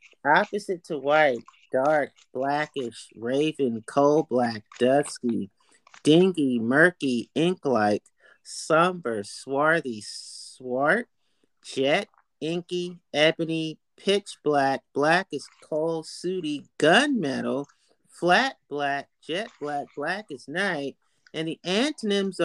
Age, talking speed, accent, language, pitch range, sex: 30-49, 95 wpm, American, English, 130-180 Hz, male